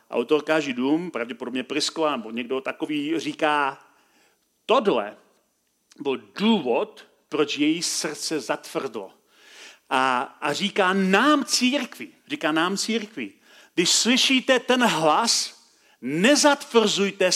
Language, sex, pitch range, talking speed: Czech, male, 165-225 Hz, 95 wpm